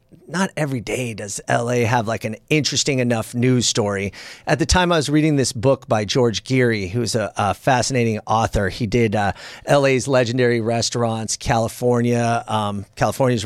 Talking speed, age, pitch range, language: 165 wpm, 40-59, 115-150 Hz, English